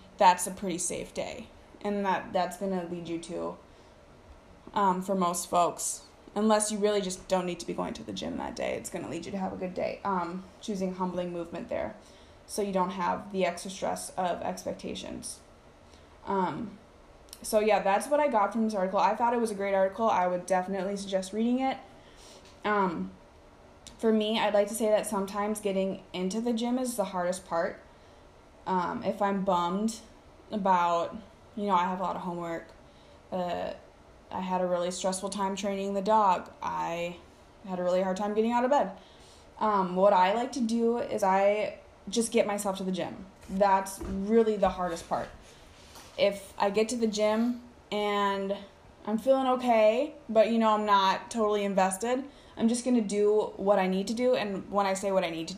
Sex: female